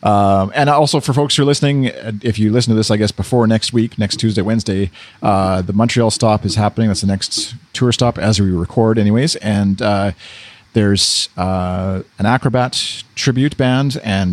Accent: American